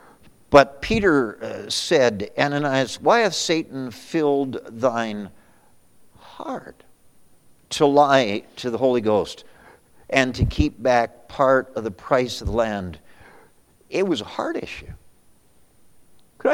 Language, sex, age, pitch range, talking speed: English, male, 60-79, 115-145 Hz, 120 wpm